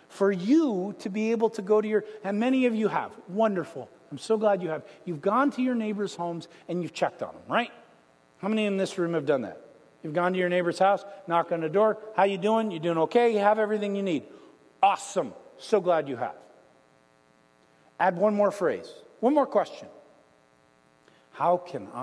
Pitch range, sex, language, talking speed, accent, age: 150-225 Hz, male, English, 205 wpm, American, 50-69